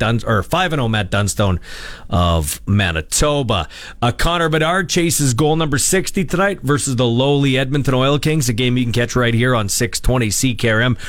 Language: English